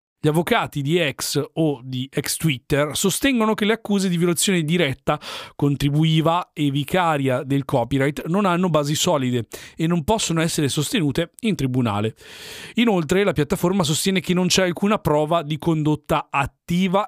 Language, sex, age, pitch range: Italian, male, 40-59, 140-180 Hz